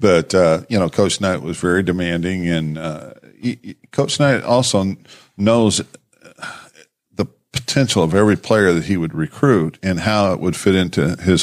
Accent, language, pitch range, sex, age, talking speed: American, English, 80-95 Hz, male, 50-69, 170 wpm